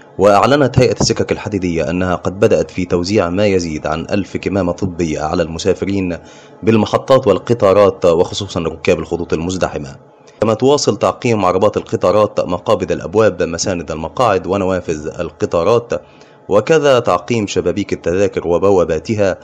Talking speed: 120 wpm